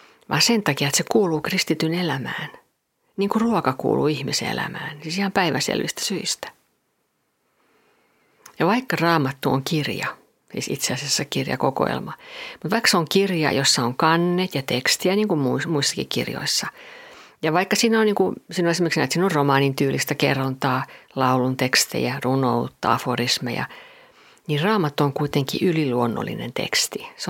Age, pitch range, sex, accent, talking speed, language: 50-69, 140-195 Hz, female, native, 145 wpm, Finnish